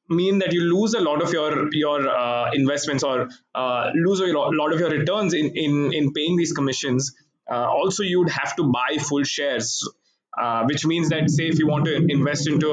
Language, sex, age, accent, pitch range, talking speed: English, male, 20-39, Indian, 140-175 Hz, 210 wpm